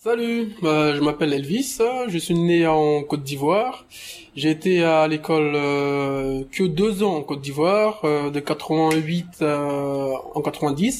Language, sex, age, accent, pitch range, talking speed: French, male, 20-39, French, 150-185 Hz, 140 wpm